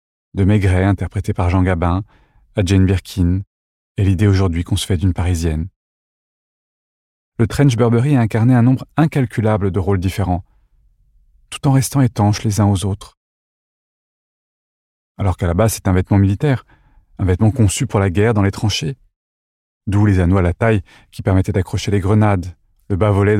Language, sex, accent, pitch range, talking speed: French, male, French, 95-110 Hz, 170 wpm